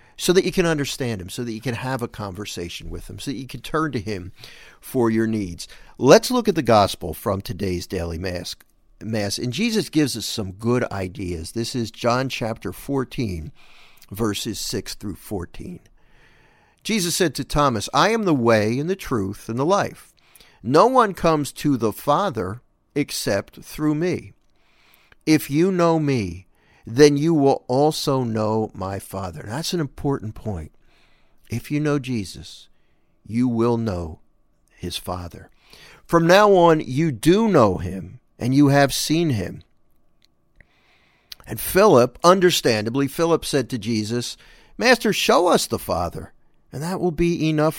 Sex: male